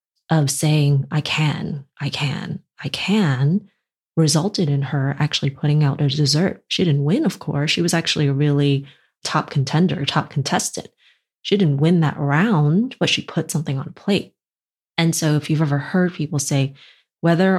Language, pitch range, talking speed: English, 145-190 Hz, 175 wpm